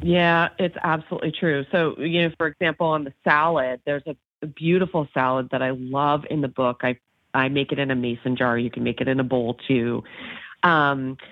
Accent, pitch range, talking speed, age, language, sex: American, 135-175 Hz, 205 wpm, 30-49, English, female